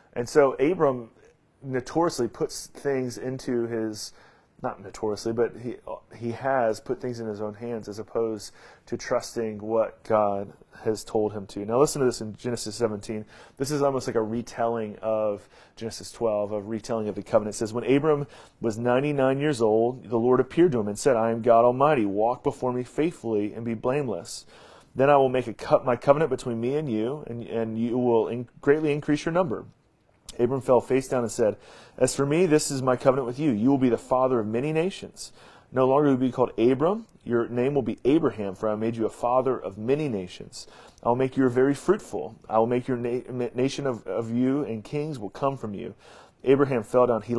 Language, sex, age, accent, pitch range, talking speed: English, male, 30-49, American, 110-135 Hz, 210 wpm